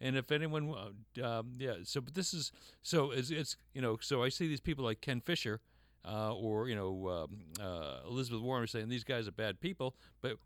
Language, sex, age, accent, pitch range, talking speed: English, male, 50-69, American, 100-135 Hz, 220 wpm